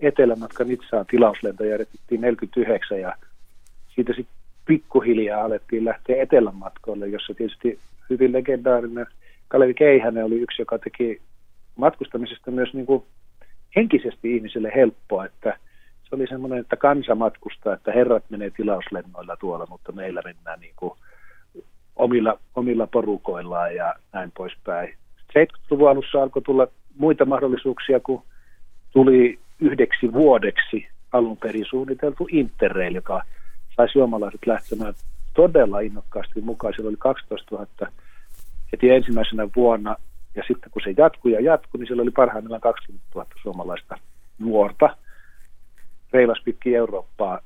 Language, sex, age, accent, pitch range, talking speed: Finnish, male, 40-59, native, 105-130 Hz, 120 wpm